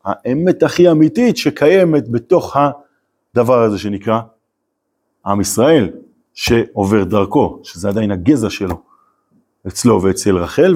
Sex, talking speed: male, 105 wpm